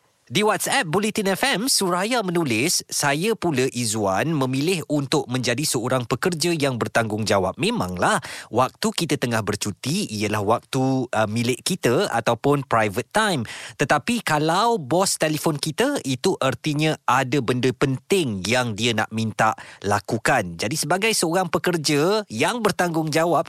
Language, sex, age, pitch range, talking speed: Malay, male, 20-39, 115-170 Hz, 130 wpm